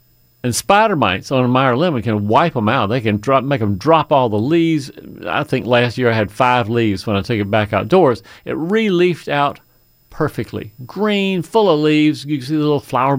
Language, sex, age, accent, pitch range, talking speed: English, male, 50-69, American, 120-150 Hz, 220 wpm